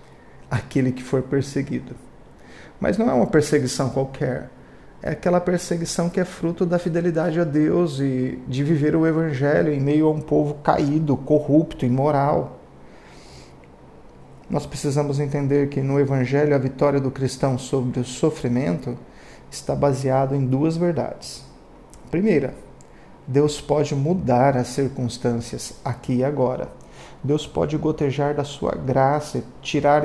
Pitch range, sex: 130-155 Hz, male